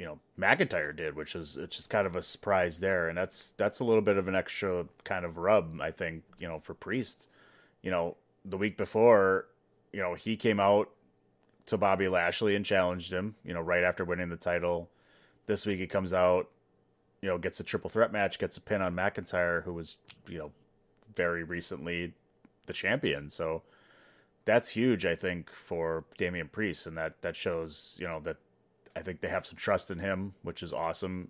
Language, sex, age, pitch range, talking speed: English, male, 30-49, 85-95 Hz, 200 wpm